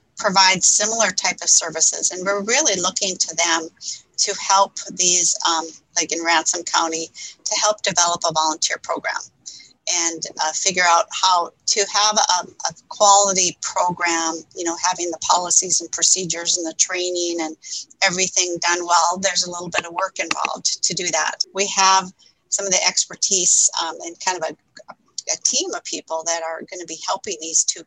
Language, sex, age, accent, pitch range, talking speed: English, female, 40-59, American, 165-185 Hz, 180 wpm